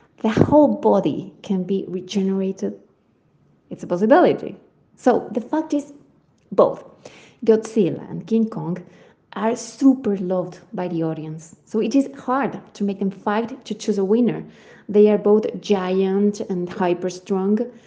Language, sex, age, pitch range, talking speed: English, female, 20-39, 185-235 Hz, 145 wpm